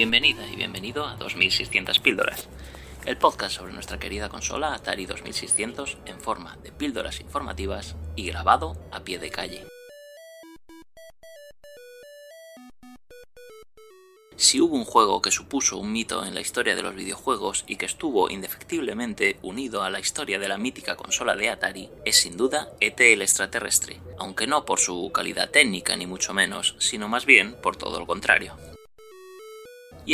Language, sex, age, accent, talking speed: Spanish, male, 30-49, Spanish, 150 wpm